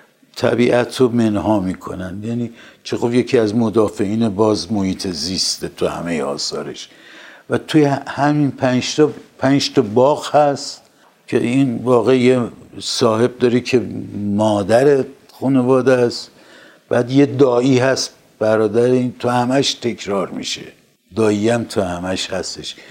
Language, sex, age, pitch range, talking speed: Persian, male, 60-79, 105-130 Hz, 120 wpm